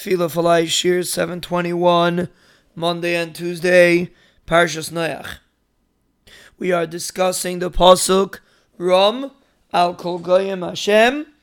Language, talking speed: English, 95 wpm